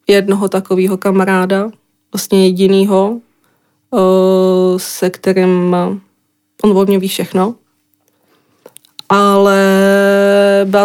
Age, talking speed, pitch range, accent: 20-39, 60 wpm, 190-205 Hz, native